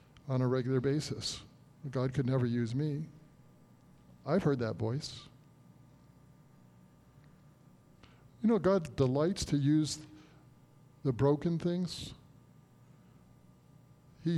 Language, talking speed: English, 95 wpm